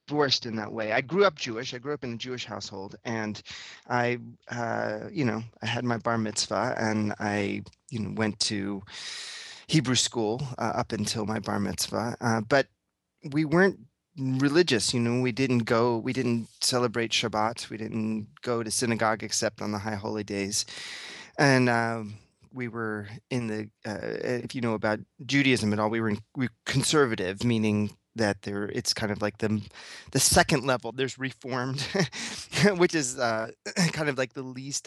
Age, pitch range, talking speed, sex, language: 30-49, 105-130 Hz, 180 wpm, male, English